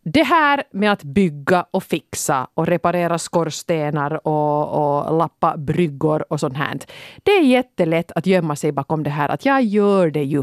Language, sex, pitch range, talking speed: Swedish, female, 155-220 Hz, 180 wpm